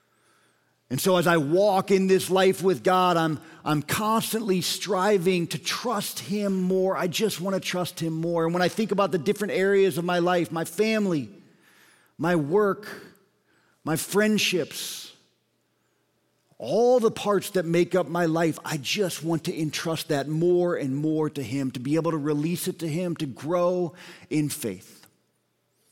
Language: English